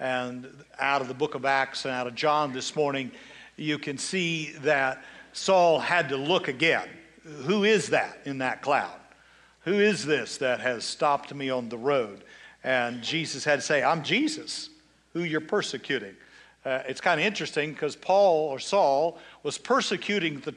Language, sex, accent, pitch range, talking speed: English, male, American, 140-180 Hz, 175 wpm